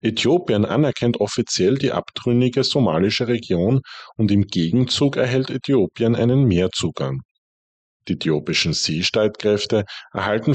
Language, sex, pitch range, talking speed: German, male, 90-125 Hz, 100 wpm